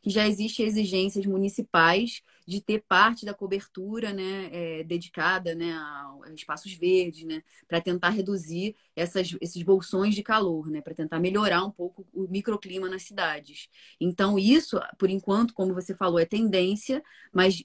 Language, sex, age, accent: Portuguese, female, 20-39, Brazilian